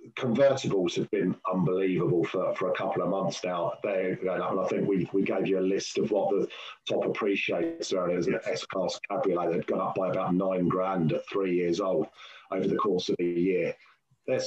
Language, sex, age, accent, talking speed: English, male, 40-59, British, 220 wpm